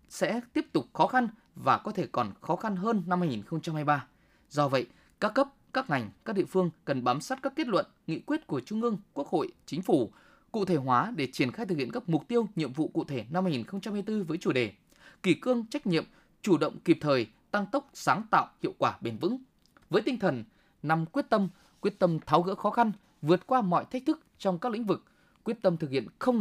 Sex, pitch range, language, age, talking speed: male, 155-235 Hz, Vietnamese, 20-39, 225 wpm